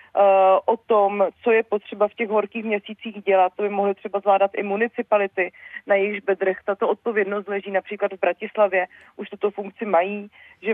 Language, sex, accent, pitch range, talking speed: Czech, female, native, 195-225 Hz, 175 wpm